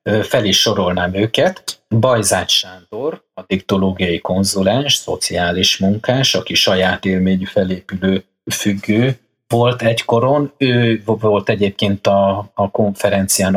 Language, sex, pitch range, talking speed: Hungarian, male, 95-105 Hz, 105 wpm